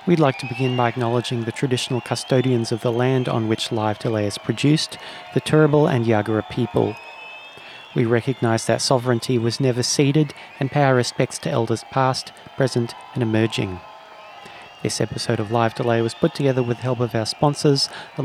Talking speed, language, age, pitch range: 180 wpm, English, 30-49, 120-150 Hz